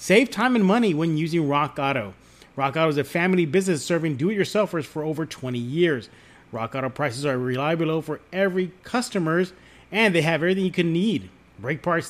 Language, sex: English, male